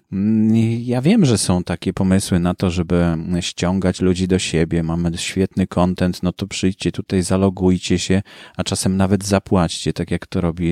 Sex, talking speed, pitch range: male, 170 wpm, 90-115 Hz